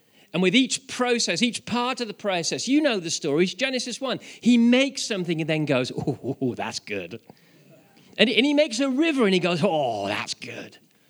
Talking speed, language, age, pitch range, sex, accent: 200 wpm, English, 40-59, 140-215 Hz, male, British